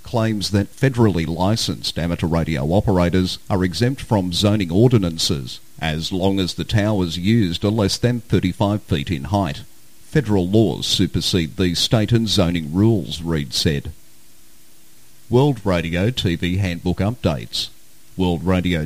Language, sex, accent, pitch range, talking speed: English, male, Australian, 85-110 Hz, 135 wpm